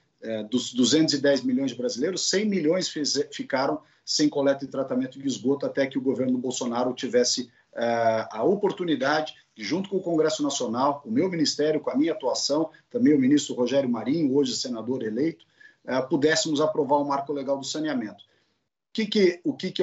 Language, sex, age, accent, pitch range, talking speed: Portuguese, male, 50-69, Brazilian, 130-220 Hz, 165 wpm